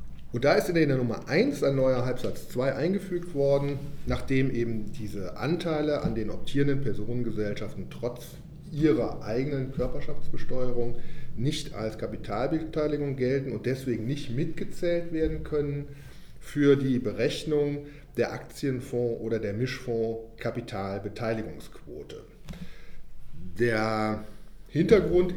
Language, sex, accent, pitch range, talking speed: German, male, German, 115-150 Hz, 110 wpm